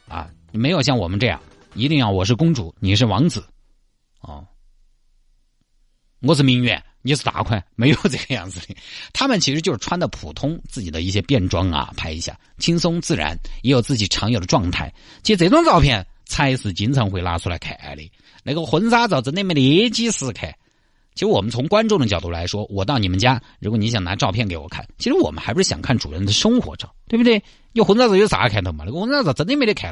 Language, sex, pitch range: Chinese, male, 100-140 Hz